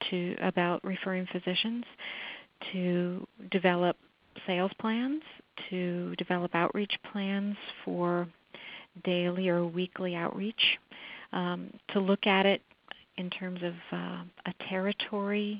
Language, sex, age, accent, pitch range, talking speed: English, female, 40-59, American, 180-205 Hz, 110 wpm